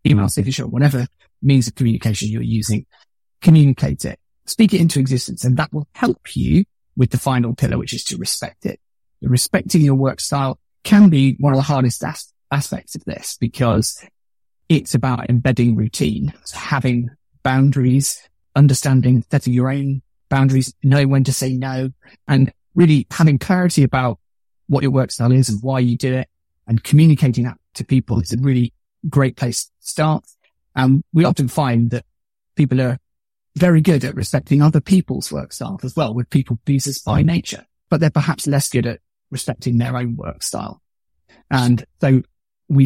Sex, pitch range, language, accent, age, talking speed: male, 115-140 Hz, English, British, 30-49, 170 wpm